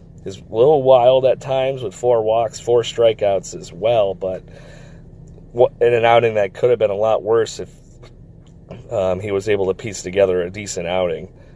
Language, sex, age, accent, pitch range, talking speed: English, male, 30-49, American, 95-125 Hz, 180 wpm